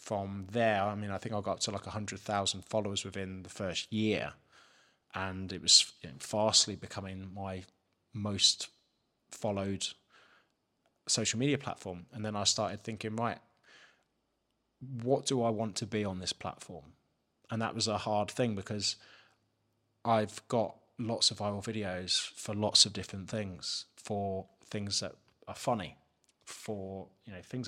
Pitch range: 100-115 Hz